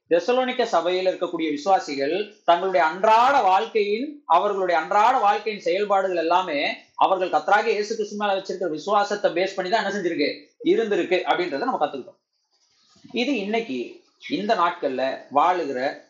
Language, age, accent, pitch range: Tamil, 30-49, native, 180-255 Hz